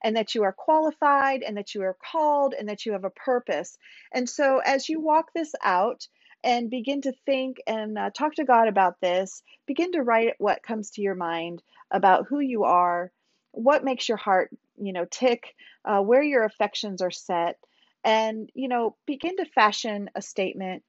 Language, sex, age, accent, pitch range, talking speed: English, female, 40-59, American, 200-265 Hz, 195 wpm